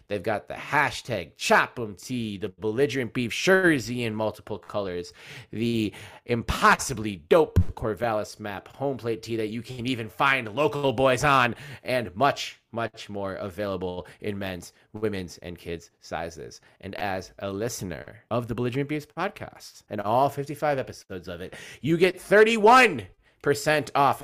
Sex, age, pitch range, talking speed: male, 30-49, 100-130 Hz, 145 wpm